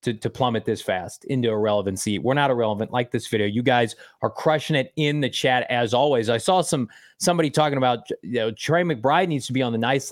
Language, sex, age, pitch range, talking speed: English, male, 30-49, 125-175 Hz, 230 wpm